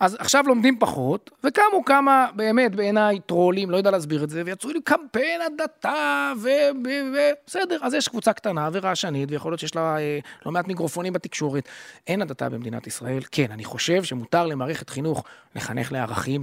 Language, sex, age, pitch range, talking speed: Hebrew, male, 30-49, 150-195 Hz, 175 wpm